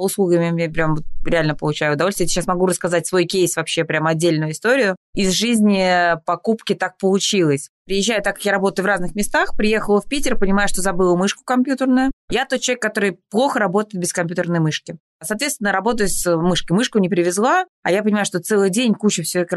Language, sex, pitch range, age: Russian, female, 175-225 Hz, 20-39